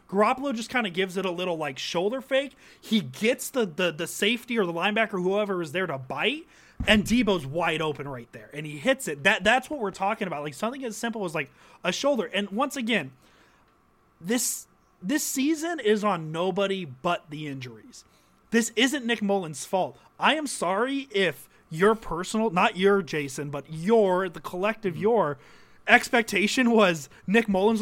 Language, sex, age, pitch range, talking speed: English, male, 30-49, 165-220 Hz, 185 wpm